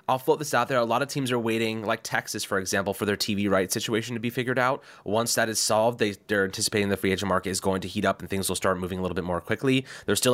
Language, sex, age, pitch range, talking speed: English, male, 20-39, 100-130 Hz, 295 wpm